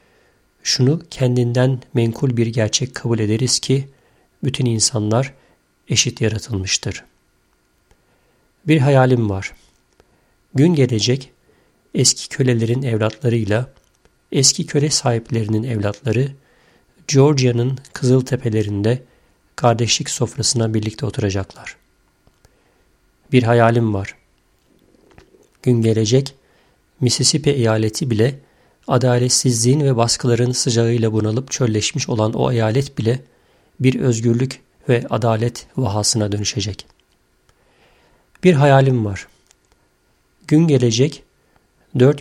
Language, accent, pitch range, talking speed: Turkish, native, 110-130 Hz, 85 wpm